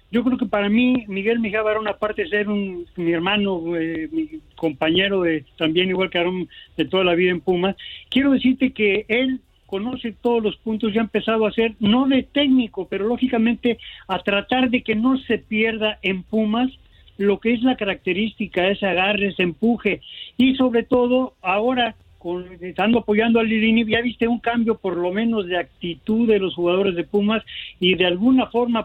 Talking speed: 185 wpm